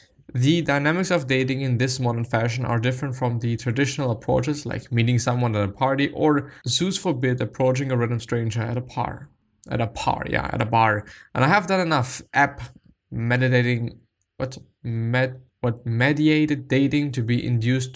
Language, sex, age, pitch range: English, male, 20-39, 120-140 Hz